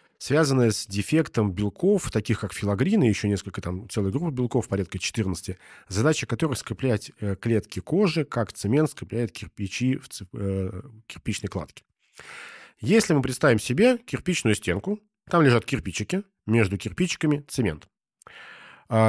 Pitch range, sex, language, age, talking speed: 100-145 Hz, male, Russian, 40-59, 130 wpm